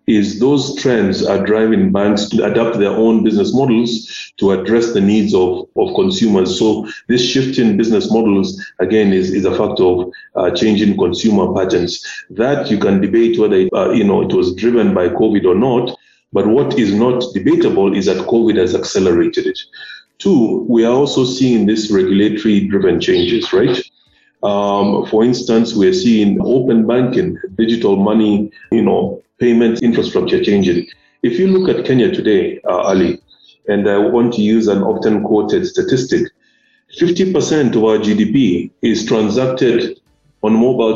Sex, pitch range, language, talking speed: male, 105-145 Hz, English, 160 wpm